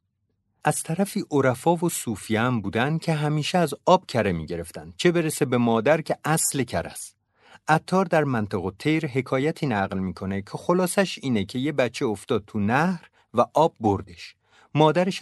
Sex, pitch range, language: male, 100-150 Hz, Persian